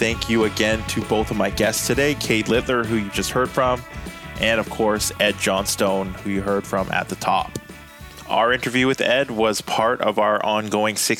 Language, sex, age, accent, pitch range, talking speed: English, male, 20-39, American, 105-120 Hz, 200 wpm